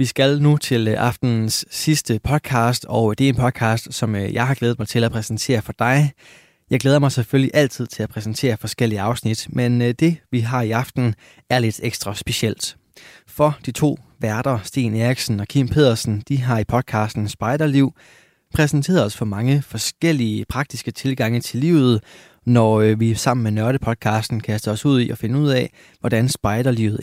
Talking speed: 180 wpm